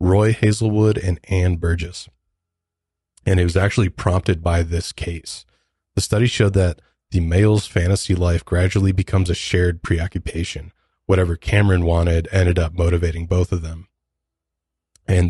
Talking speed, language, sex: 140 wpm, English, male